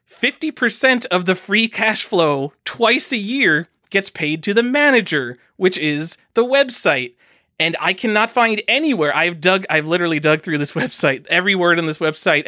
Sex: male